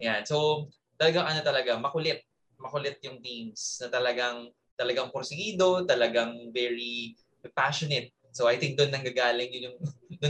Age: 20-39